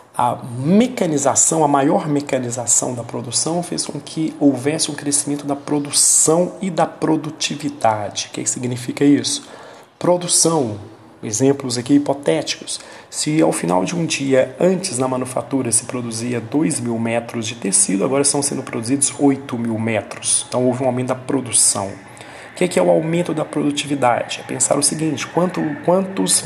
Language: Romanian